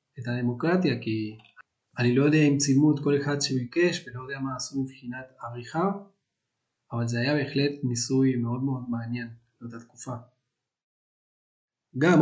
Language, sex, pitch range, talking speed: Hebrew, male, 125-175 Hz, 145 wpm